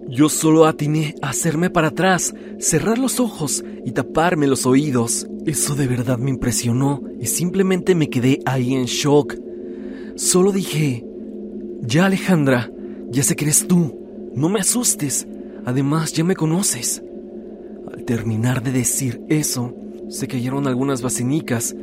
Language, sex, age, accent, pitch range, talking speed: Spanish, male, 40-59, Mexican, 120-155 Hz, 140 wpm